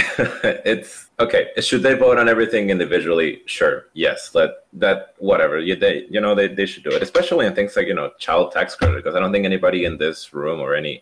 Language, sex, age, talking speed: English, male, 20-39, 230 wpm